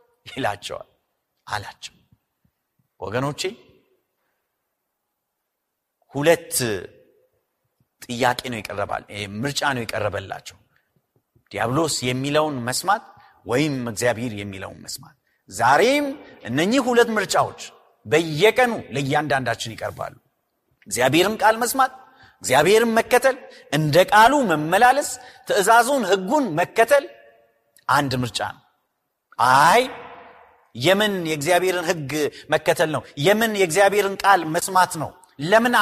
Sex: male